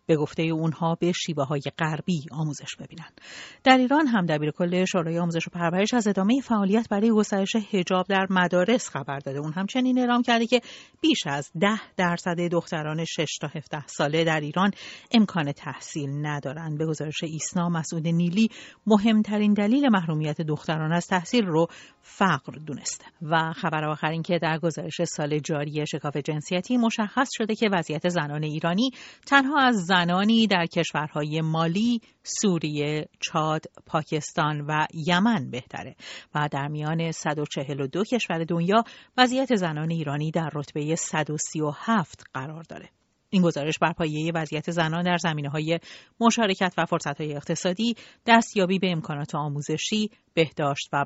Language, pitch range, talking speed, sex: Persian, 155-200 Hz, 145 wpm, female